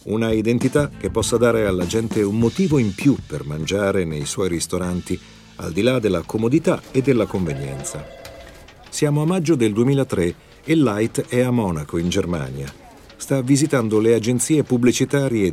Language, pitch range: Italian, 95-140 Hz